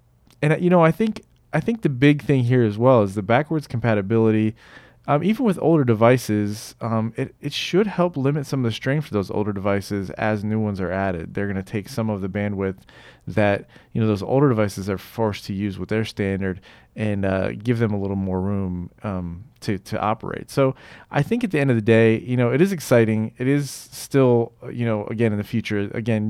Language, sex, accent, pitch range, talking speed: English, male, American, 100-120 Hz, 225 wpm